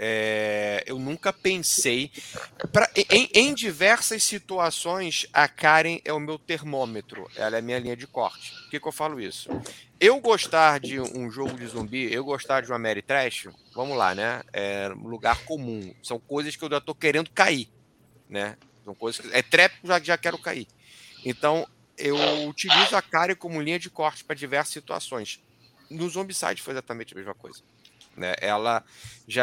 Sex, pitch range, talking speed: male, 120-160 Hz, 175 wpm